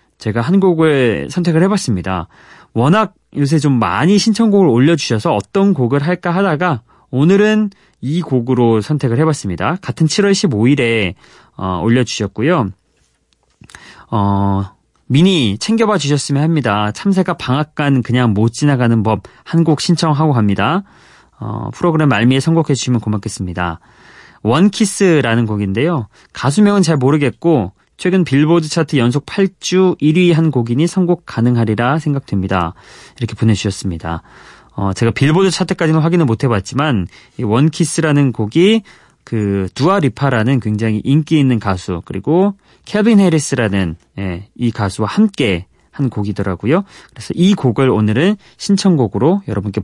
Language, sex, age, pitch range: Korean, male, 30-49, 105-170 Hz